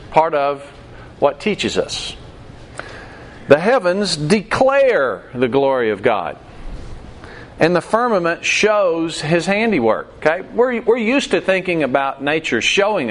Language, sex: English, male